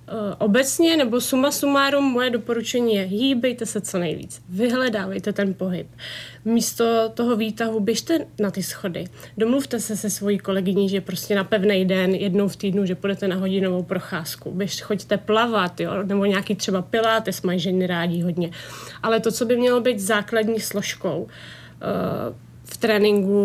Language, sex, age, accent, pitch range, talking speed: Czech, female, 30-49, native, 190-225 Hz, 160 wpm